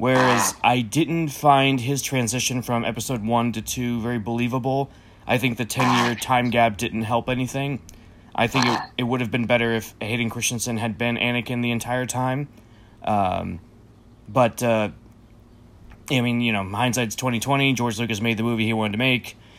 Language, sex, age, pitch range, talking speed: English, male, 20-39, 115-130 Hz, 180 wpm